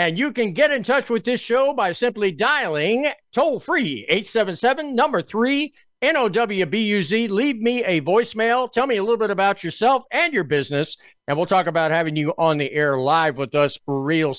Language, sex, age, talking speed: English, male, 50-69, 175 wpm